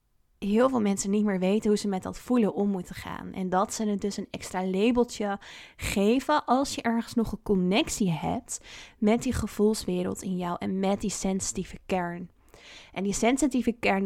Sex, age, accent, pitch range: female, 20-39, Dutch, 195-230 Hz